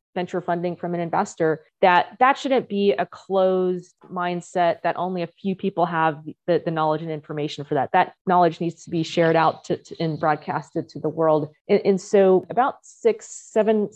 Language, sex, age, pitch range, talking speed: English, female, 30-49, 165-190 Hz, 185 wpm